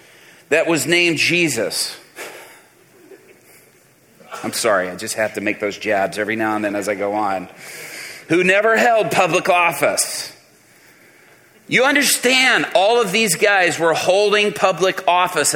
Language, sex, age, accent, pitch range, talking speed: English, male, 40-59, American, 150-205 Hz, 140 wpm